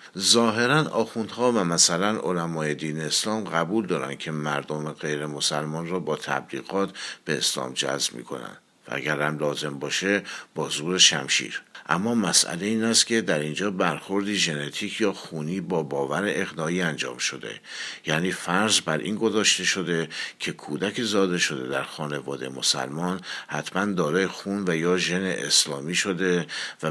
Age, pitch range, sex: 50-69, 75-95 Hz, male